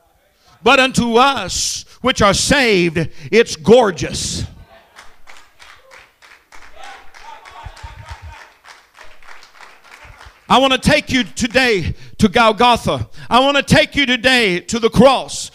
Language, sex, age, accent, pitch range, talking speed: English, male, 50-69, American, 230-295 Hz, 95 wpm